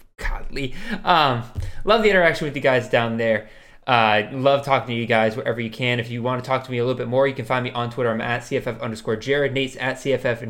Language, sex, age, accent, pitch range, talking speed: English, male, 20-39, American, 125-155 Hz, 250 wpm